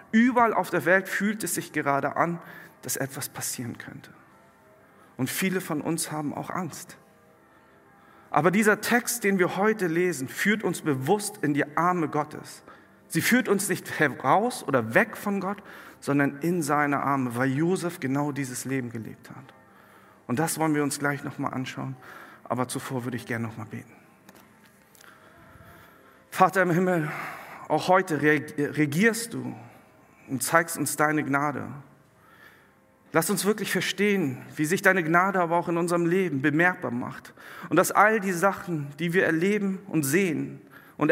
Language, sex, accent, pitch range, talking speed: German, male, German, 140-190 Hz, 160 wpm